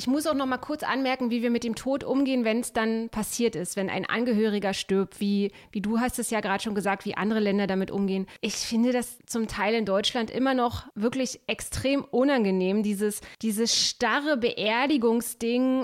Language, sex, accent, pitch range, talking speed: German, female, German, 200-245 Hz, 195 wpm